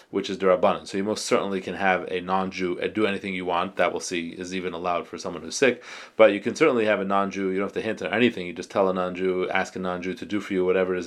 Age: 30-49